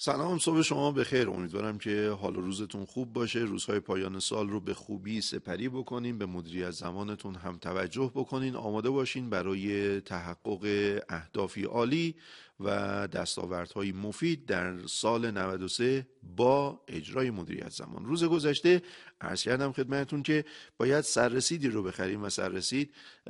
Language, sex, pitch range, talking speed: Persian, male, 100-140 Hz, 140 wpm